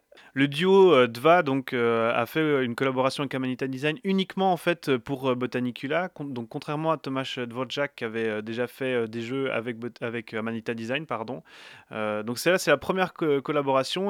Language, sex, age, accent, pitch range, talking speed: French, male, 30-49, French, 120-145 Hz, 200 wpm